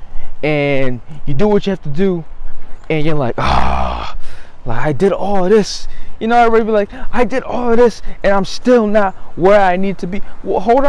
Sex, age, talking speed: male, 20-39, 220 wpm